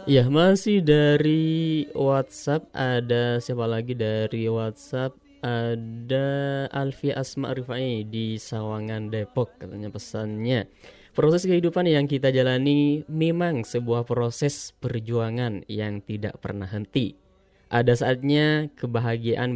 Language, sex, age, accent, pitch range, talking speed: Indonesian, male, 20-39, native, 110-145 Hz, 105 wpm